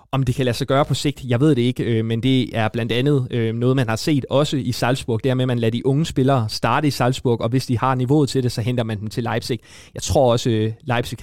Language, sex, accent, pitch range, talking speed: Danish, male, native, 115-130 Hz, 285 wpm